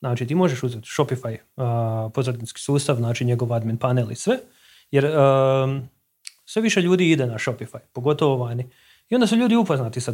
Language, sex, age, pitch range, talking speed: Croatian, male, 30-49, 125-150 Hz, 170 wpm